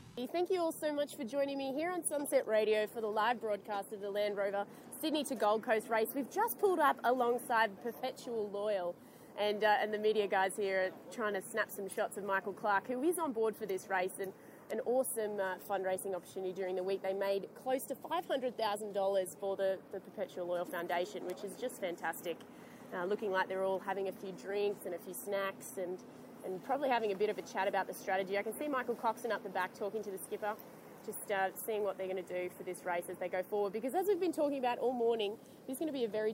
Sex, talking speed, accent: female, 240 wpm, Australian